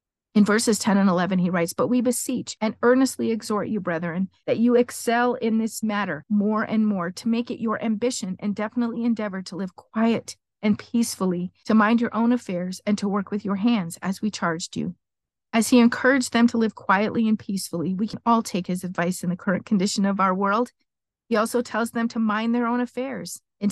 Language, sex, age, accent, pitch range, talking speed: English, female, 40-59, American, 185-230 Hz, 210 wpm